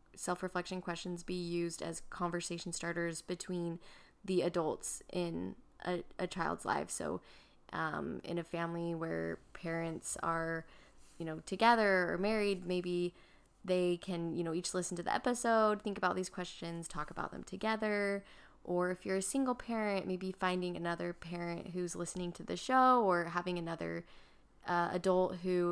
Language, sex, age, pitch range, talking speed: English, female, 20-39, 175-200 Hz, 155 wpm